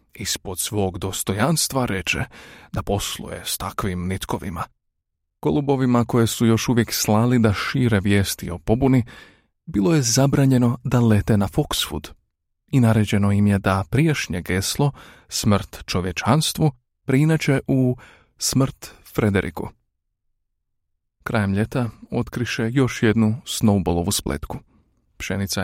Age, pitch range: 30-49, 95-125 Hz